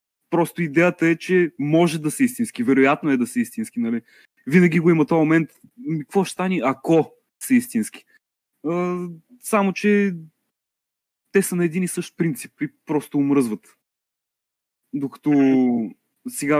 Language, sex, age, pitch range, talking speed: Bulgarian, male, 20-39, 135-195 Hz, 140 wpm